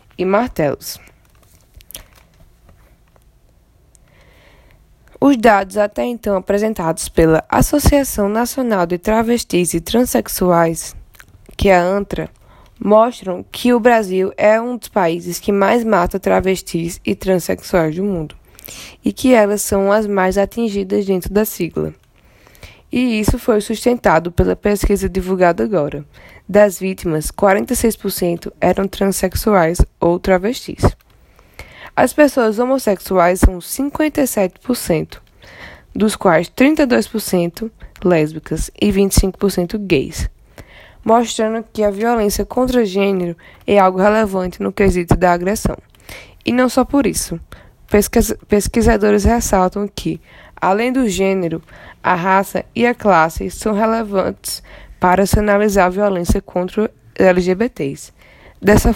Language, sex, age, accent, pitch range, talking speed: Portuguese, female, 10-29, Brazilian, 180-220 Hz, 110 wpm